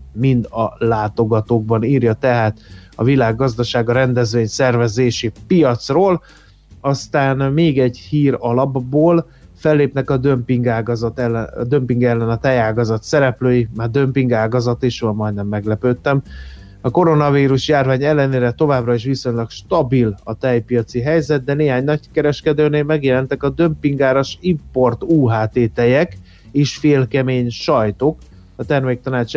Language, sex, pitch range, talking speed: Hungarian, male, 115-140 Hz, 115 wpm